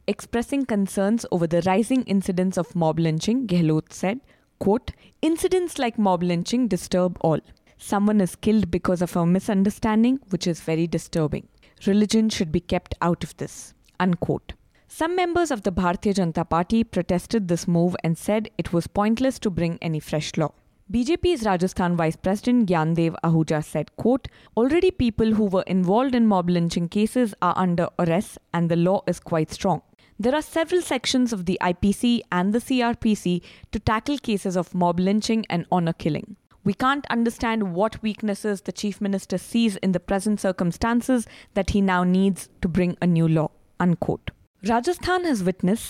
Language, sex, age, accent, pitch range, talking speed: English, female, 20-39, Indian, 175-225 Hz, 165 wpm